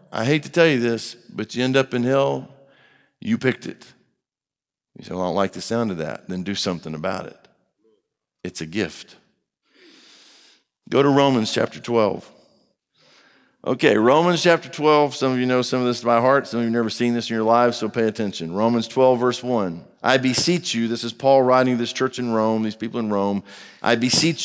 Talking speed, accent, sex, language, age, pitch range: 210 wpm, American, male, English, 50-69, 110-140 Hz